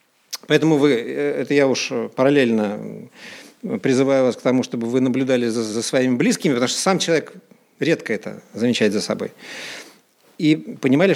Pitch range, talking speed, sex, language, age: 130-170 Hz, 150 wpm, male, Russian, 50-69